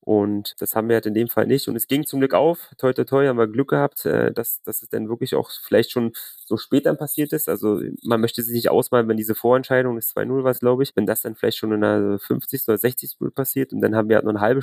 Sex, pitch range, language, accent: male, 110-125 Hz, German, German